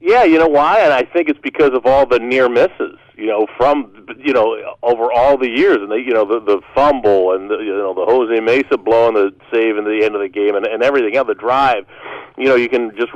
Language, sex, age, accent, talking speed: English, male, 40-59, American, 260 wpm